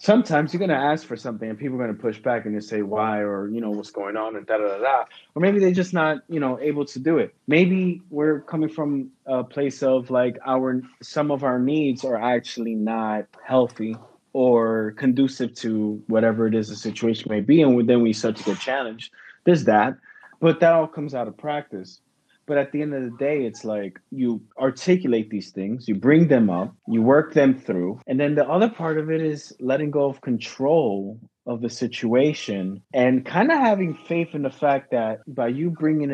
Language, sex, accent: English, male, American